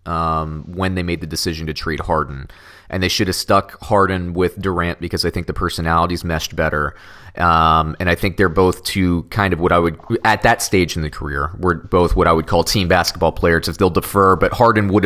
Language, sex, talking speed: English, male, 225 wpm